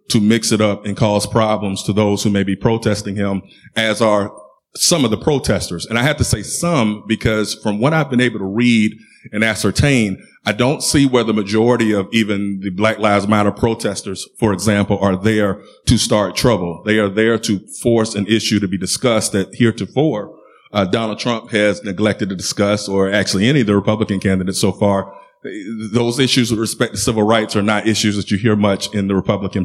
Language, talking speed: English, 205 wpm